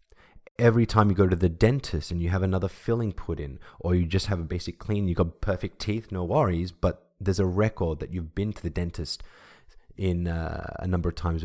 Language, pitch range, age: English, 85-110 Hz, 20-39